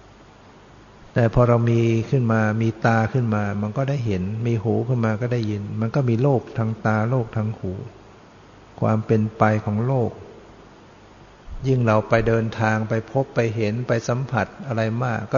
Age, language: 60-79, Thai